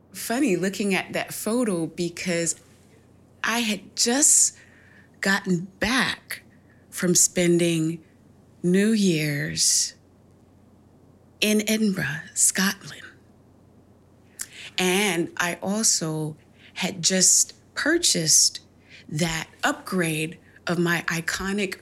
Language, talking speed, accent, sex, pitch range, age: English, 80 wpm, American, female, 130-200 Hz, 30-49